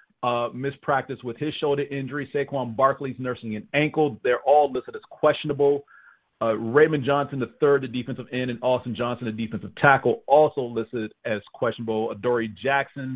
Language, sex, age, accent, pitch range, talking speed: English, male, 40-59, American, 115-140 Hz, 165 wpm